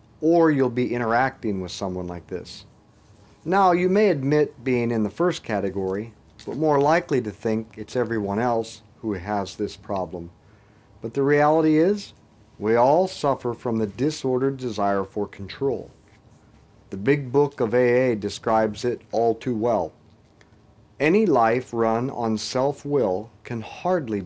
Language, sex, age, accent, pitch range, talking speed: English, male, 50-69, American, 105-140 Hz, 145 wpm